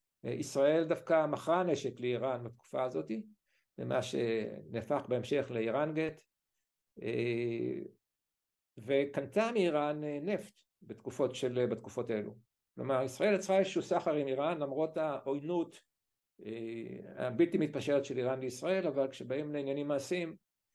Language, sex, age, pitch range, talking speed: Hebrew, male, 60-79, 125-165 Hz, 105 wpm